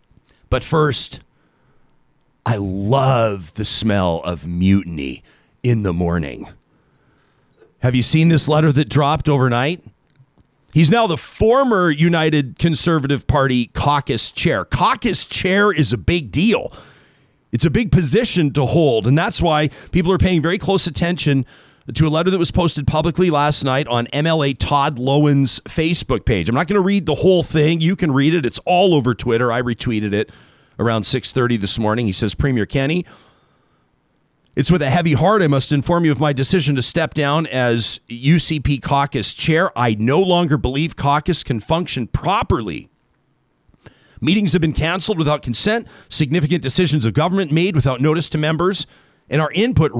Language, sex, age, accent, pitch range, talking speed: English, male, 40-59, American, 125-165 Hz, 165 wpm